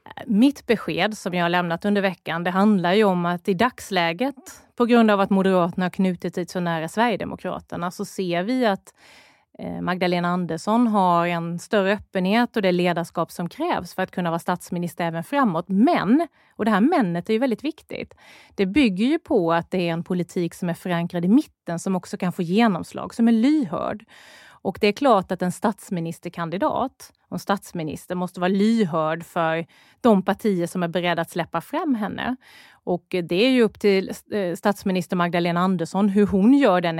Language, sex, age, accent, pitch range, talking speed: Swedish, female, 30-49, native, 175-215 Hz, 185 wpm